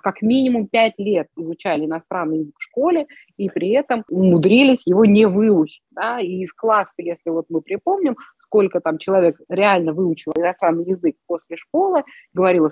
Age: 20-39